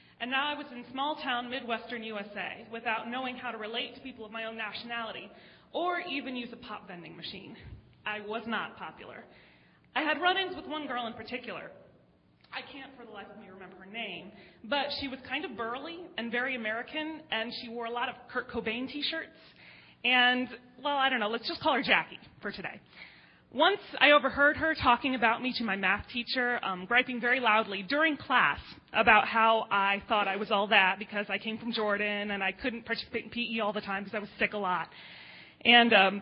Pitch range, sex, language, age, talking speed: 215-270 Hz, female, English, 30-49, 210 wpm